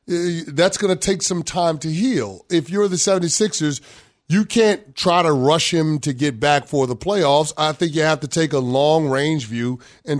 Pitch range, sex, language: 135-165 Hz, male, English